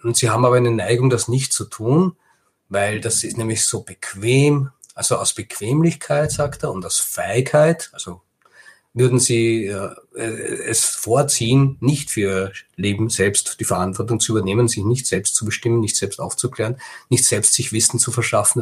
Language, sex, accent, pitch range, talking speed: German, male, German, 105-125 Hz, 170 wpm